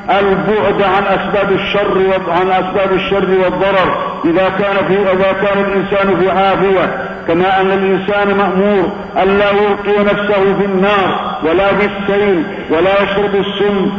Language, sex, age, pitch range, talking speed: Arabic, male, 50-69, 190-200 Hz, 130 wpm